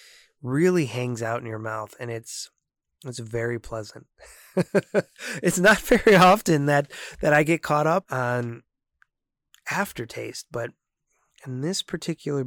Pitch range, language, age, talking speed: 125-180 Hz, English, 20-39, 130 wpm